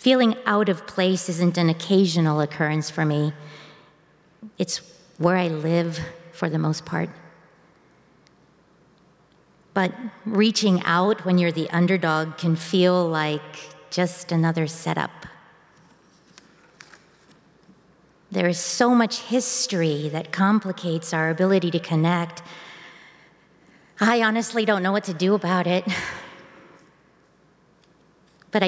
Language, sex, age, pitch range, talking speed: English, female, 50-69, 165-200 Hz, 110 wpm